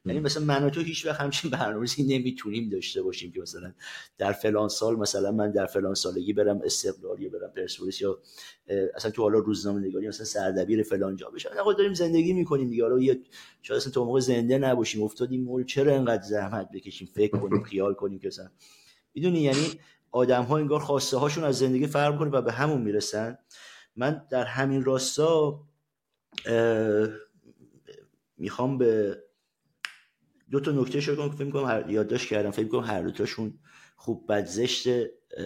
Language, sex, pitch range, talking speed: Persian, male, 100-140 Hz, 155 wpm